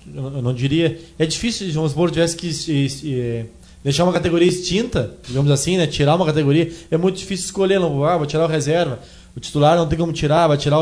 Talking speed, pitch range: 210 wpm, 155-195 Hz